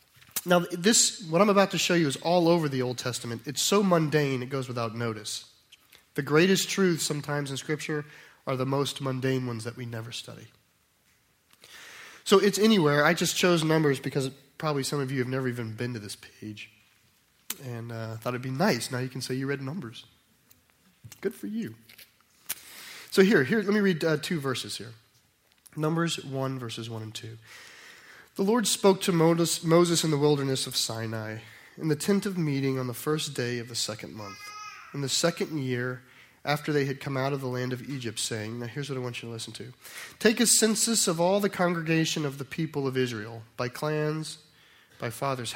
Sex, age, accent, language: male, 30-49, American, English